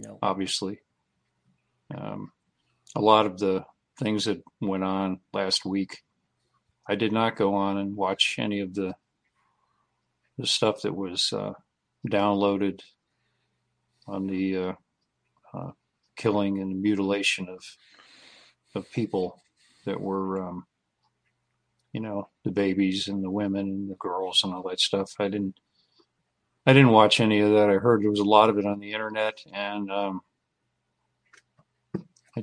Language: English